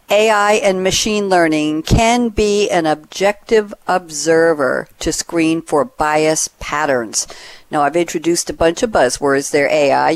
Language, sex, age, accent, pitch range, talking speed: English, female, 60-79, American, 155-195 Hz, 135 wpm